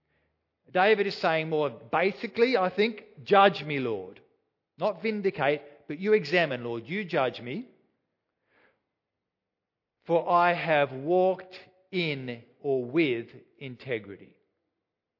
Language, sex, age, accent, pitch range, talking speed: English, male, 50-69, Australian, 125-185 Hz, 105 wpm